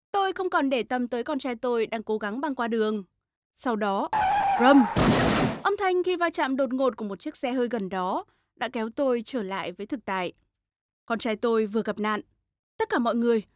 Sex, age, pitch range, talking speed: female, 20-39, 235-335 Hz, 220 wpm